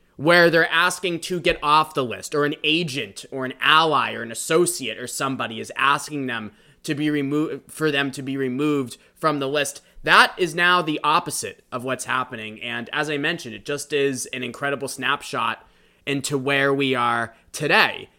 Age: 20-39